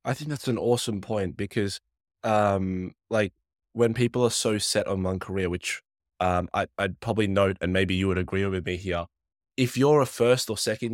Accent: Australian